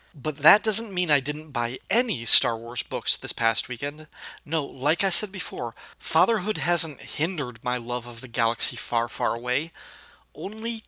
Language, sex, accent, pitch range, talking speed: English, male, American, 135-165 Hz, 170 wpm